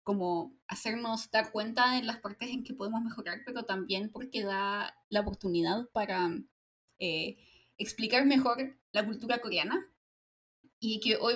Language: Spanish